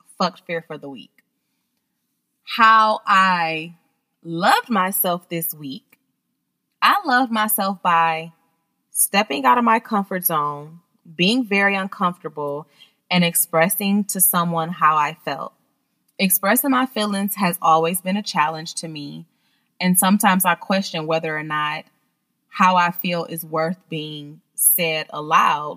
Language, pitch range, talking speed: English, 165-205 Hz, 130 wpm